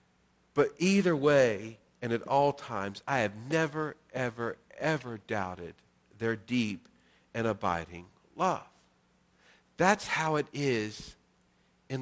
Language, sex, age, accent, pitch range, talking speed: English, male, 50-69, American, 130-190 Hz, 115 wpm